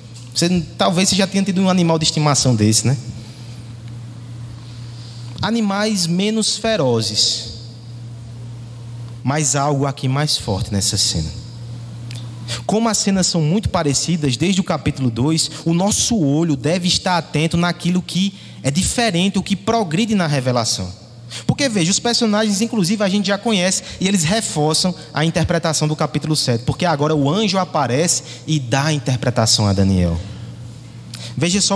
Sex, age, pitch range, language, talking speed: male, 20-39, 120-175 Hz, Portuguese, 145 wpm